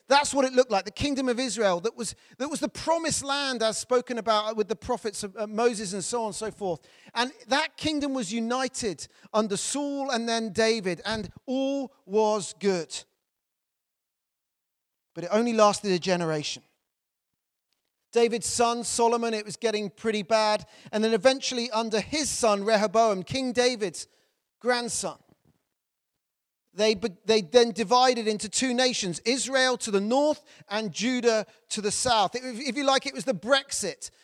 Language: English